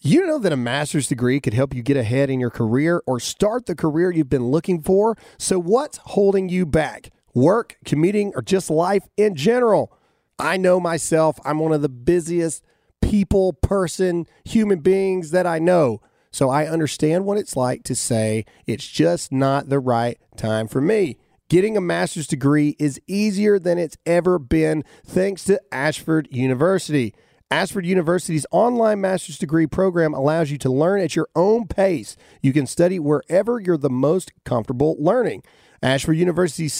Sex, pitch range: male, 145-190 Hz